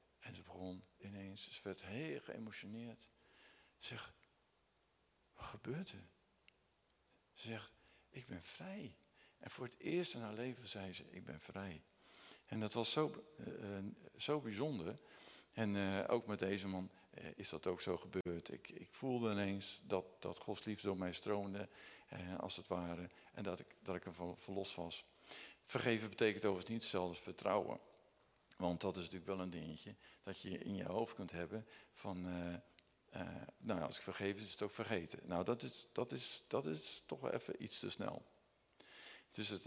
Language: Dutch